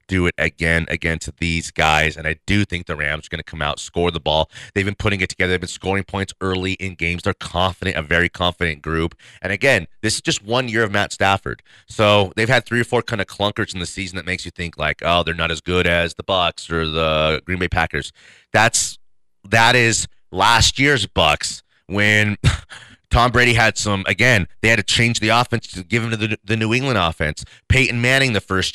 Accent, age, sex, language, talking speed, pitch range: American, 30-49, male, English, 230 wpm, 85-115 Hz